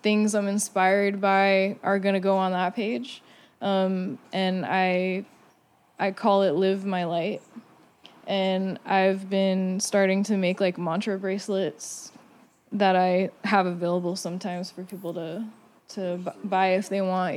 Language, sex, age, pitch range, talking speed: English, female, 10-29, 190-220 Hz, 150 wpm